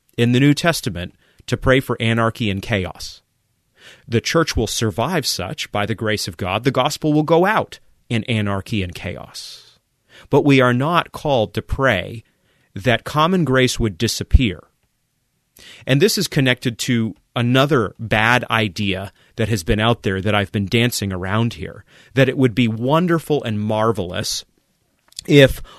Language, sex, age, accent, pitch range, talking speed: English, male, 30-49, American, 105-135 Hz, 160 wpm